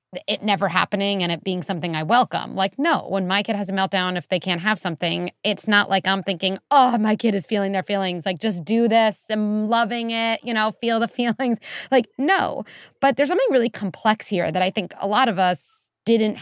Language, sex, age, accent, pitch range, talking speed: English, female, 30-49, American, 185-245 Hz, 225 wpm